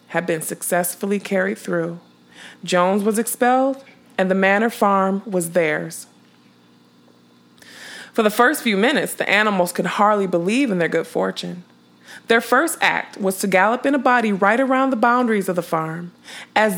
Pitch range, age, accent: 170-215 Hz, 20-39, American